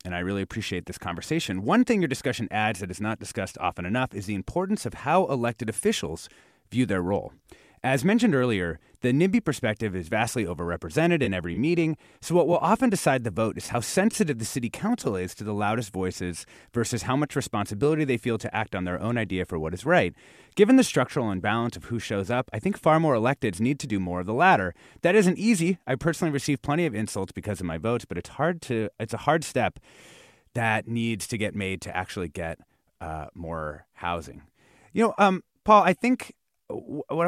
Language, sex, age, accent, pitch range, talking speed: English, male, 30-49, American, 95-145 Hz, 210 wpm